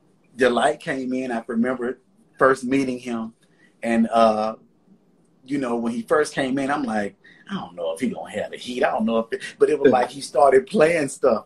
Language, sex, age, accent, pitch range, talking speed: English, male, 30-49, American, 115-155 Hz, 215 wpm